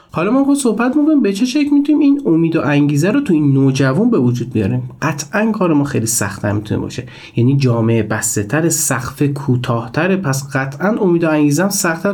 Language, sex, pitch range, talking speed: Persian, male, 125-180 Hz, 190 wpm